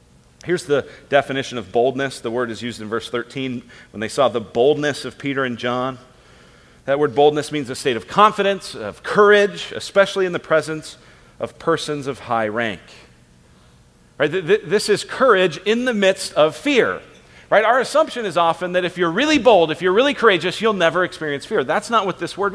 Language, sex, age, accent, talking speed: English, male, 40-59, American, 190 wpm